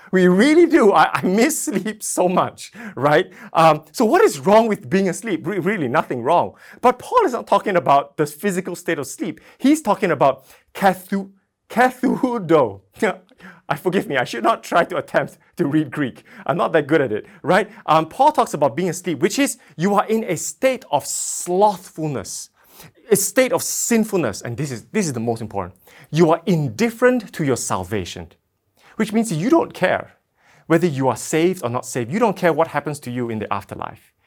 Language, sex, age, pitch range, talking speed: English, male, 30-49, 130-200 Hz, 195 wpm